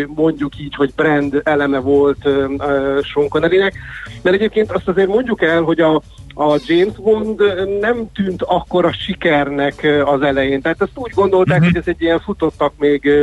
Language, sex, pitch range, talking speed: Hungarian, male, 145-170 Hz, 160 wpm